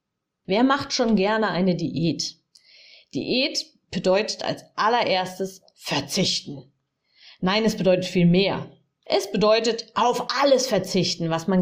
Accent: German